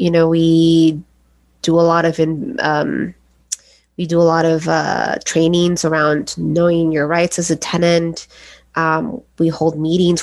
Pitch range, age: 160-195 Hz, 20-39